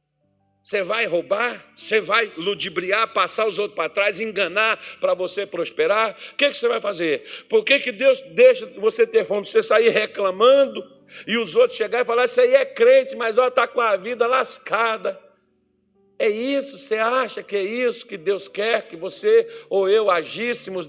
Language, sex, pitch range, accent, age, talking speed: Portuguese, male, 195-280 Hz, Brazilian, 60-79, 180 wpm